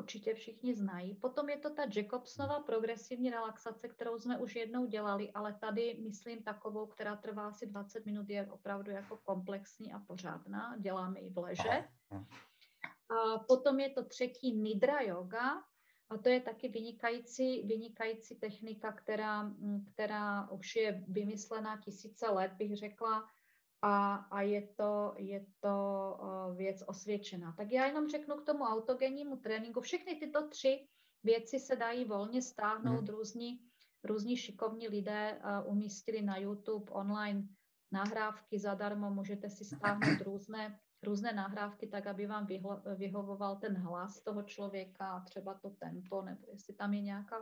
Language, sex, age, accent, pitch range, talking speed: Czech, female, 30-49, native, 200-235 Hz, 140 wpm